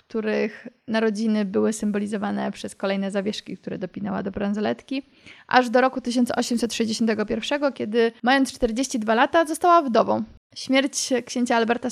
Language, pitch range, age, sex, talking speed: Polish, 215-245 Hz, 20-39, female, 120 wpm